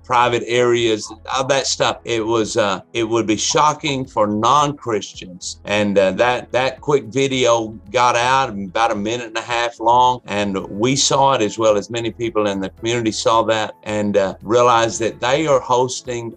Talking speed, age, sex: 185 wpm, 50-69, male